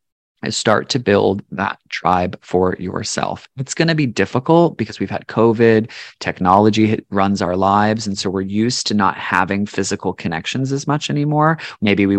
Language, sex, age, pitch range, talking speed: English, male, 30-49, 95-115 Hz, 165 wpm